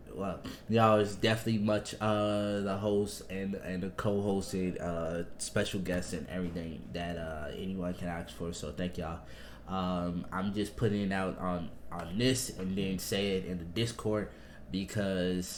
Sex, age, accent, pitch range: male, 20-39, American, 90-105 Hz